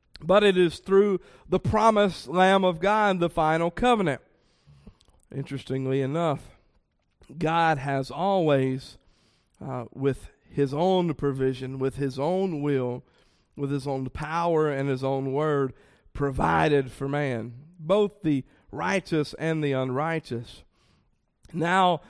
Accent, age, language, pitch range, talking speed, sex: American, 40-59, English, 140-180 Hz, 120 wpm, male